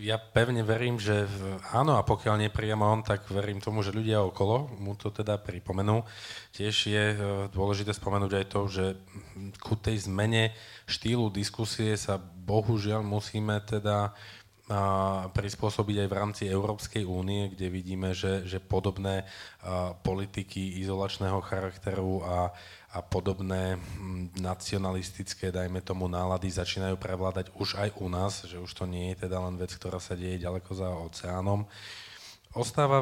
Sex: male